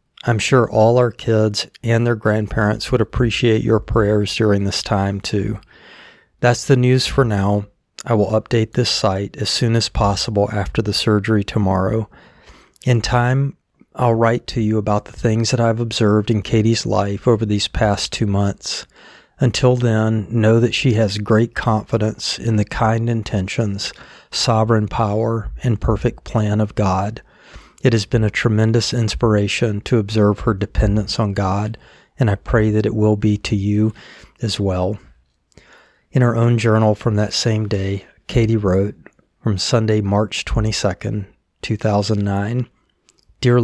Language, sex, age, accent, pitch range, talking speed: English, male, 40-59, American, 105-115 Hz, 155 wpm